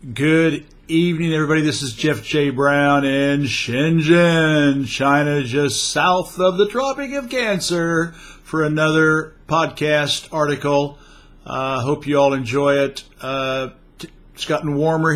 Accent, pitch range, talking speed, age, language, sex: American, 125-155 Hz, 130 wpm, 50-69, English, male